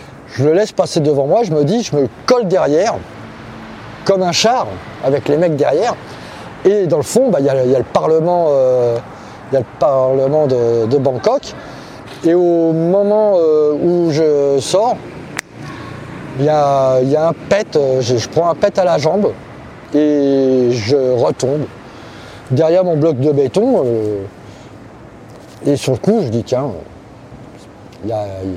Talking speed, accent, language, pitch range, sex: 170 wpm, French, French, 125-160 Hz, male